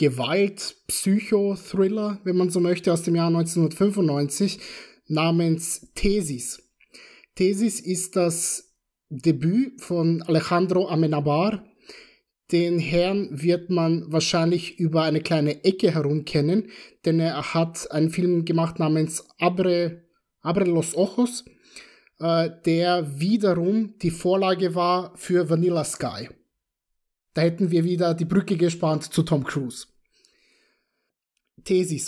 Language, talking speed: German, 110 wpm